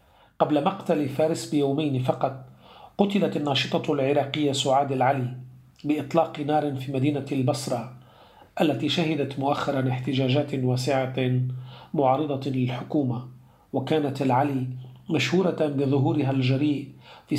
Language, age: Arabic, 40-59